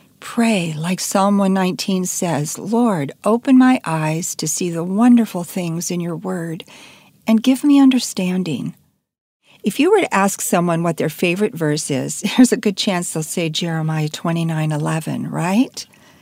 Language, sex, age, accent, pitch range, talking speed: English, female, 50-69, American, 165-225 Hz, 155 wpm